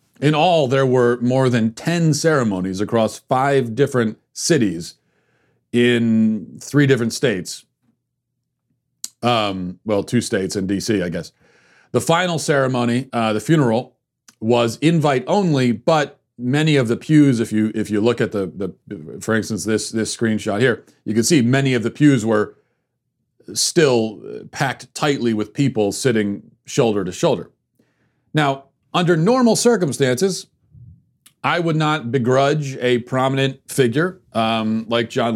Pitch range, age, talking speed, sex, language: 110-140 Hz, 40-59, 140 wpm, male, English